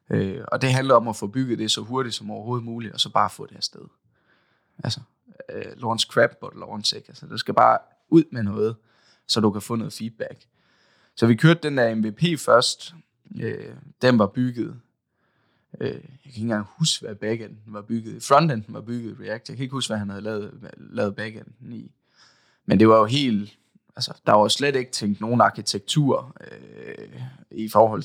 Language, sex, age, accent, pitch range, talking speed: Danish, male, 20-39, native, 110-135 Hz, 200 wpm